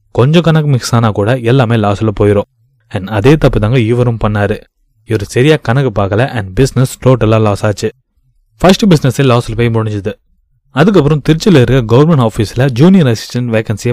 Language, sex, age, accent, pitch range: Tamil, male, 20-39, native, 110-145 Hz